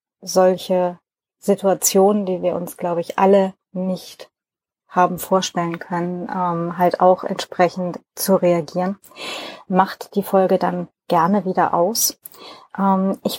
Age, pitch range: 20-39, 180-205 Hz